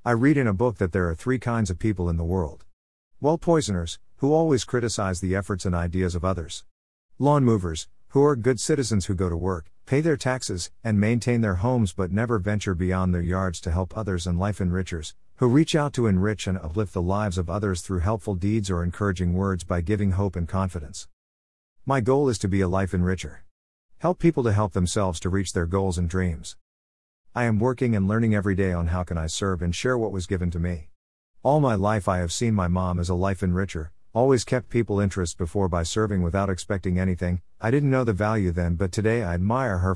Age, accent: 50-69, American